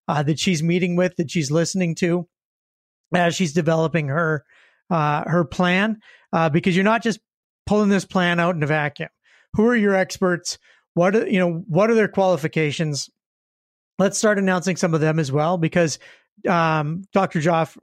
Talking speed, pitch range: 170 wpm, 160-195 Hz